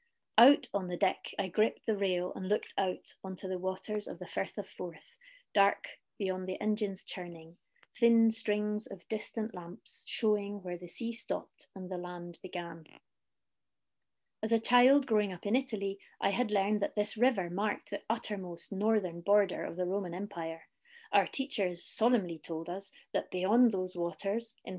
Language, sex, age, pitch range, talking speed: English, female, 30-49, 185-230 Hz, 170 wpm